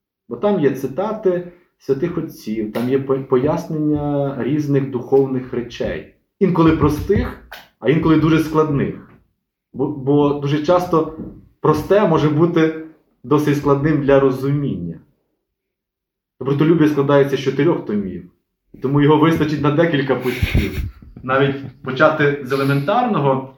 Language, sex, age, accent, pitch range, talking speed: Ukrainian, male, 20-39, native, 120-155 Hz, 115 wpm